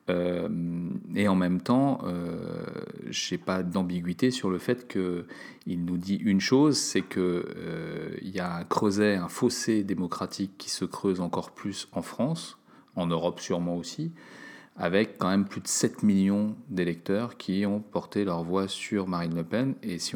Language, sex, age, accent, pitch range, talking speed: French, male, 40-59, French, 90-105 Hz, 175 wpm